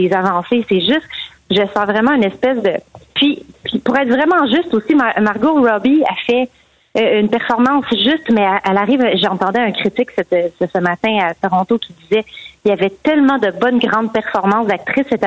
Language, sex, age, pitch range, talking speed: French, female, 30-49, 195-250 Hz, 195 wpm